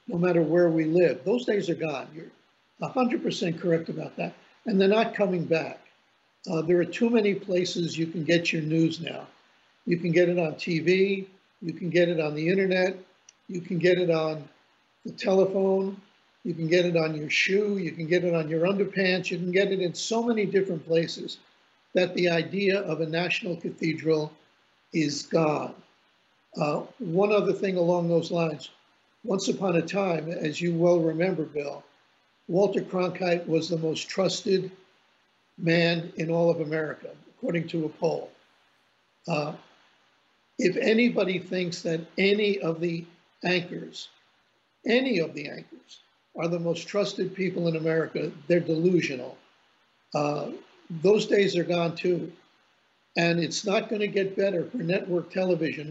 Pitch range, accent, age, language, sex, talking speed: 165-195 Hz, American, 50-69, English, male, 165 wpm